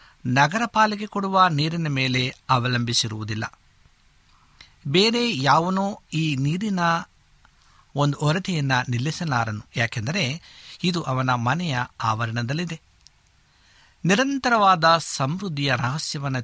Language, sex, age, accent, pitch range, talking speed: Kannada, male, 60-79, native, 120-170 Hz, 75 wpm